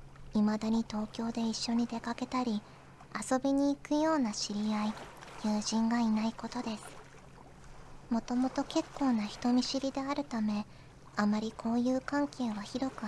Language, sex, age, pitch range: Japanese, male, 40-59, 215-250 Hz